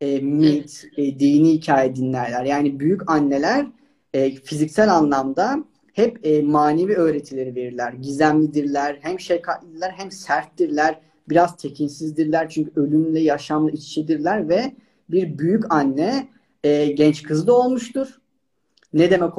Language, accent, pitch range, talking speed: Turkish, native, 145-205 Hz, 125 wpm